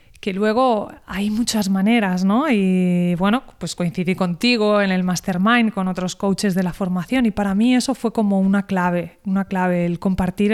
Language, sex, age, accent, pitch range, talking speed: Spanish, female, 20-39, Spanish, 185-220 Hz, 180 wpm